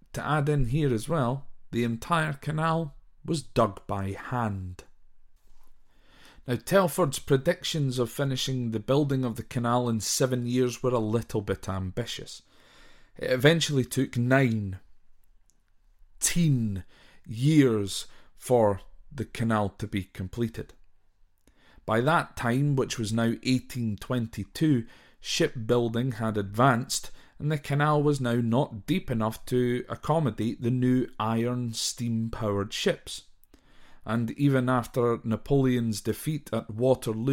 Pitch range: 110-140 Hz